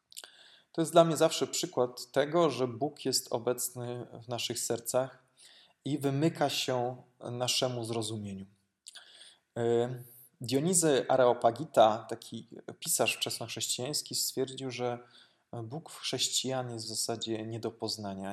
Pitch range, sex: 115-135 Hz, male